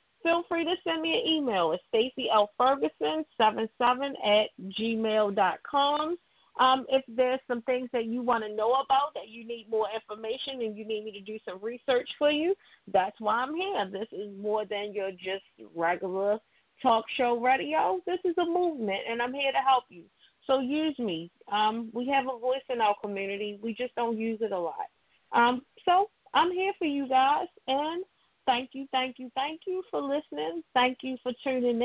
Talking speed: 190 wpm